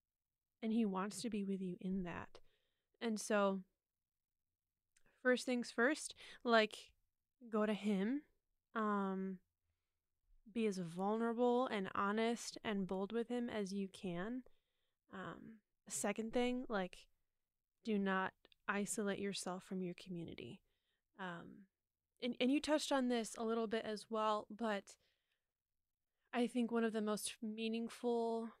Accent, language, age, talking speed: American, English, 20-39, 130 wpm